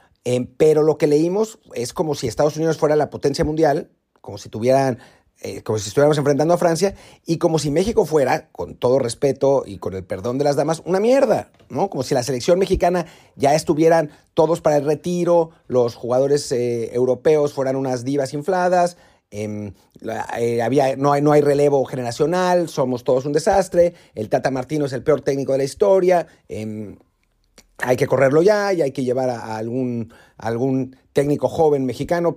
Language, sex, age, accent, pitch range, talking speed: Spanish, male, 40-59, Mexican, 125-165 Hz, 180 wpm